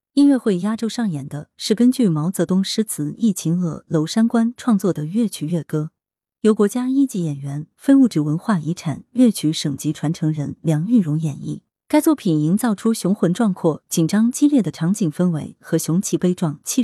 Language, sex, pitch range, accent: Chinese, female, 155-225 Hz, native